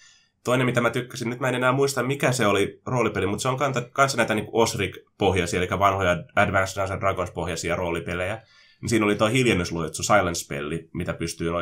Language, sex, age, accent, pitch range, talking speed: Finnish, male, 20-39, native, 90-115 Hz, 180 wpm